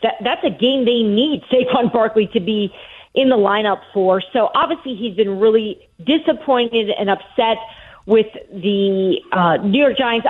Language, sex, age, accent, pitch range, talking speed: English, female, 40-59, American, 195-250 Hz, 155 wpm